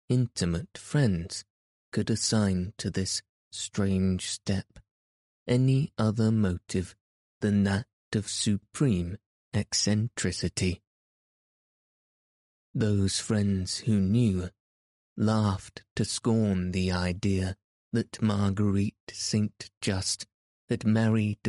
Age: 30-49